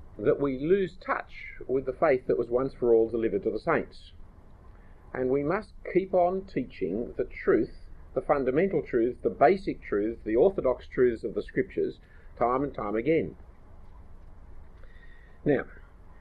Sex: male